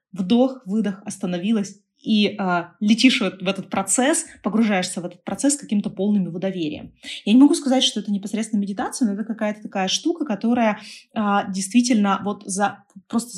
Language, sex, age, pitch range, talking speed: Russian, female, 20-39, 185-230 Hz, 165 wpm